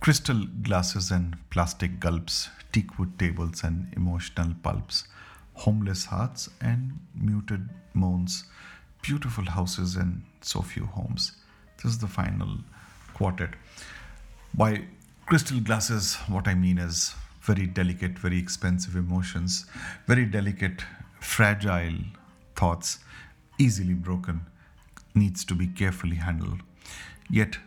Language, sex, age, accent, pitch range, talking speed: English, male, 50-69, Indian, 90-105 Hz, 110 wpm